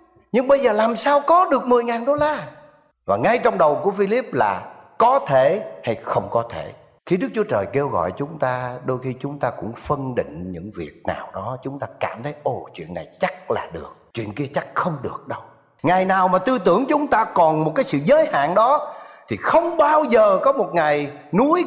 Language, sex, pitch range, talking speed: Vietnamese, male, 150-250 Hz, 220 wpm